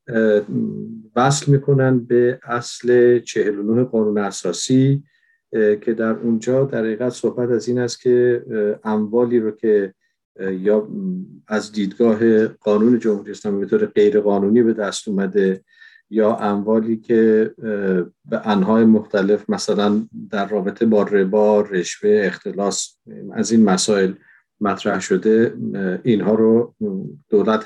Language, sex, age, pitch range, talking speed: Persian, male, 50-69, 105-125 Hz, 115 wpm